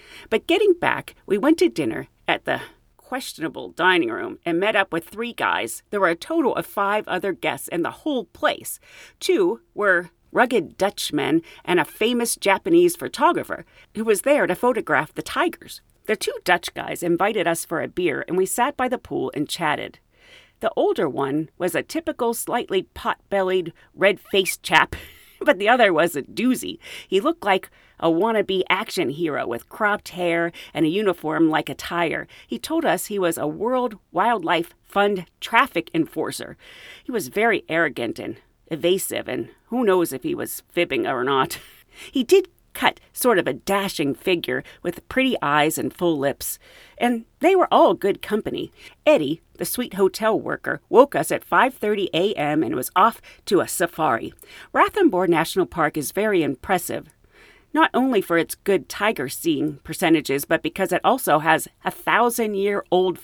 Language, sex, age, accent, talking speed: English, female, 40-59, American, 165 wpm